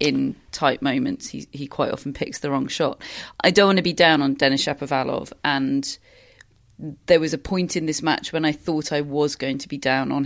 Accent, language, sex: British, English, female